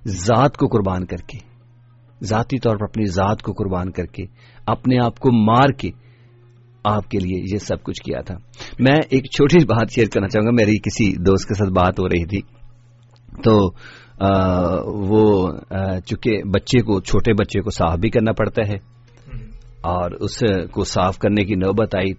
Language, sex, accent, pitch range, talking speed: English, male, Indian, 100-135 Hz, 165 wpm